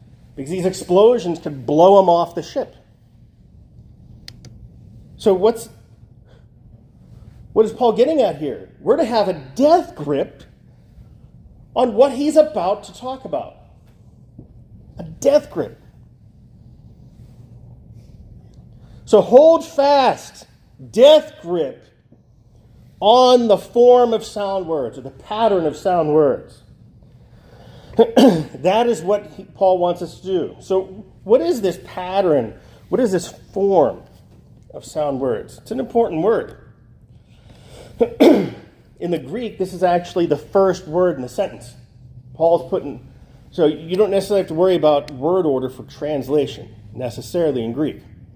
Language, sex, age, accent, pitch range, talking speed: English, male, 40-59, American, 130-215 Hz, 125 wpm